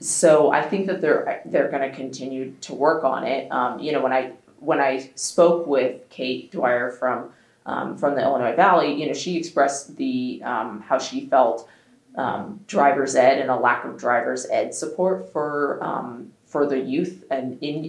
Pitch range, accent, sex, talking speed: 130-175 Hz, American, female, 190 wpm